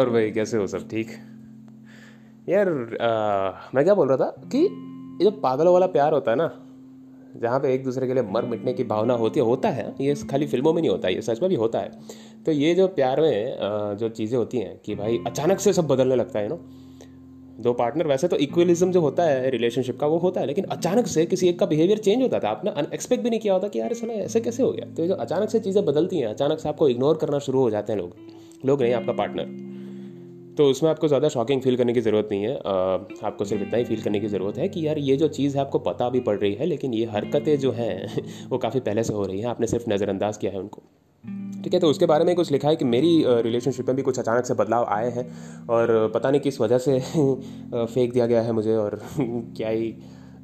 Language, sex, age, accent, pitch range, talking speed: Hindi, male, 20-39, native, 110-155 Hz, 245 wpm